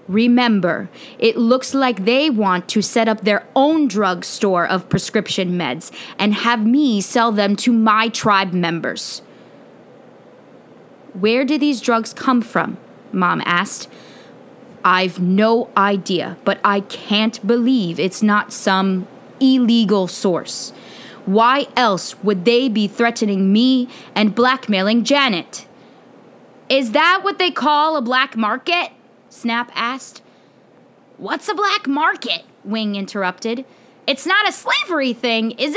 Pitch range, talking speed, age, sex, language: 205-265 Hz, 130 wpm, 20-39, female, English